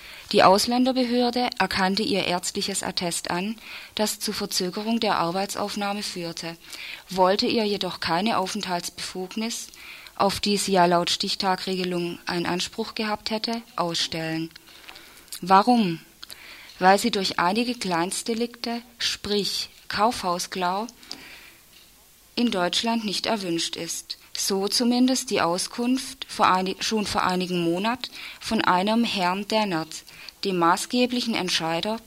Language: German